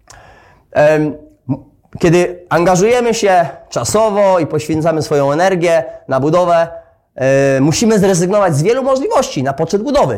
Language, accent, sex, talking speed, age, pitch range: Polish, native, male, 105 wpm, 20-39, 150-185 Hz